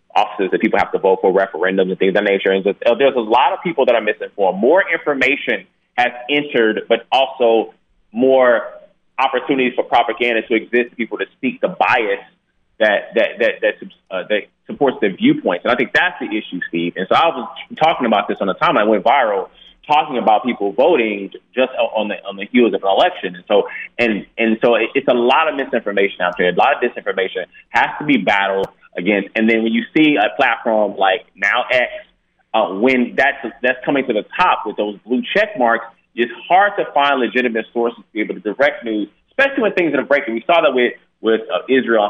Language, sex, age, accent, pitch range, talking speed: English, male, 30-49, American, 105-130 Hz, 210 wpm